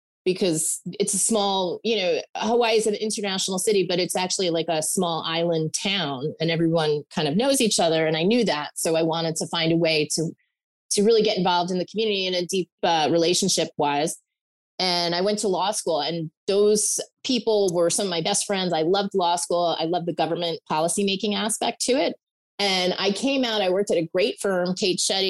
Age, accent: 30-49, American